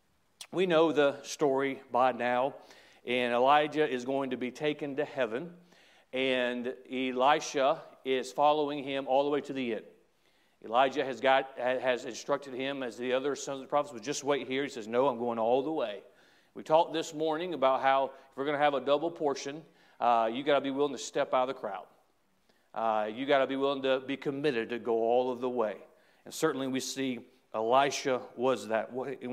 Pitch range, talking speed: 125-145 Hz, 205 wpm